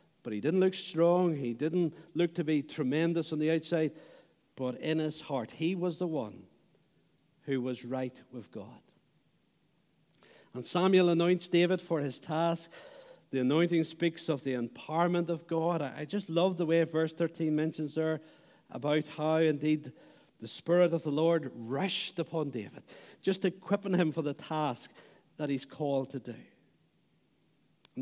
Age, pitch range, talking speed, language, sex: 50-69, 145-180 Hz, 160 wpm, English, male